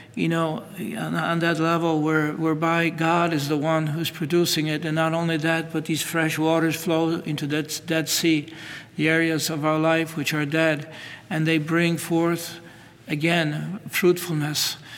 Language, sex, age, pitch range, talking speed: English, male, 60-79, 150-160 Hz, 165 wpm